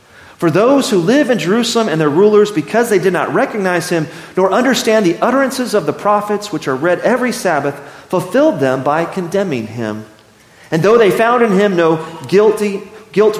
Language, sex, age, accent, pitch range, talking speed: English, male, 40-59, American, 150-215 Hz, 185 wpm